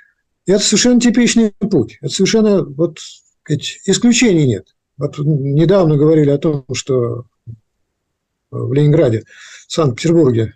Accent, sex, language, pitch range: native, male, Russian, 135-195 Hz